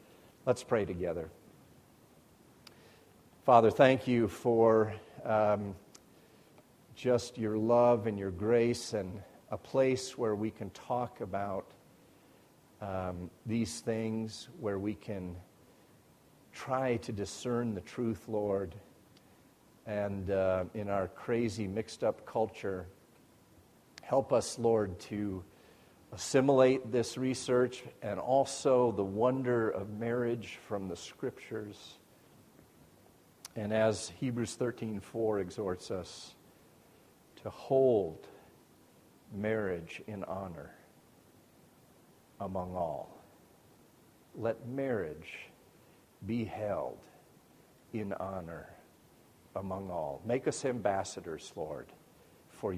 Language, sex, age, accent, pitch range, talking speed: English, male, 50-69, American, 100-120 Hz, 95 wpm